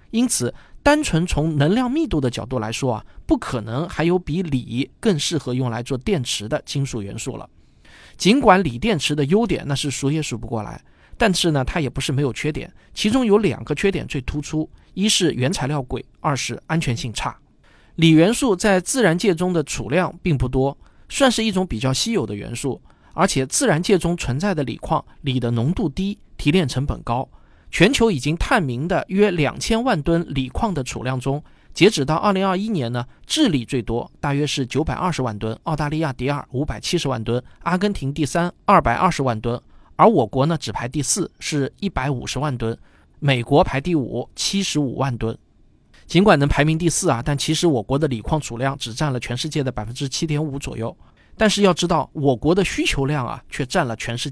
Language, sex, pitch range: Chinese, male, 130-175 Hz